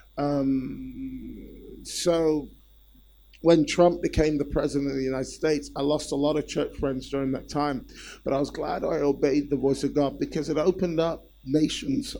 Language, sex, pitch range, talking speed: English, male, 135-155 Hz, 175 wpm